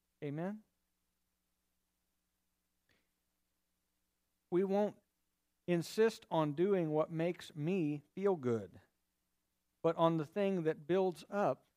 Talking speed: 90 wpm